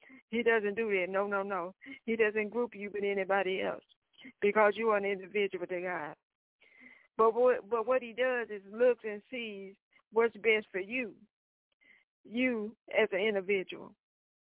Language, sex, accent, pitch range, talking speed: English, female, American, 190-230 Hz, 160 wpm